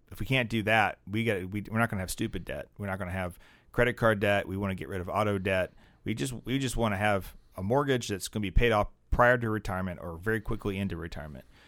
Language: English